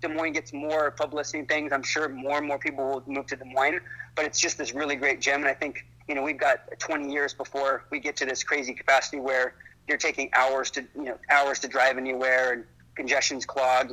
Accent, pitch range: American, 130-150 Hz